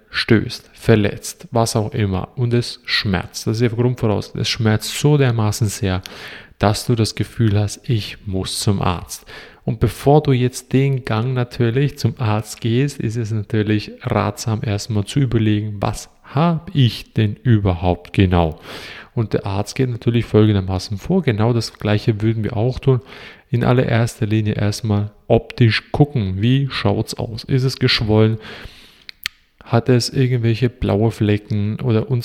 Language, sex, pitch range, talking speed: German, male, 105-125 Hz, 155 wpm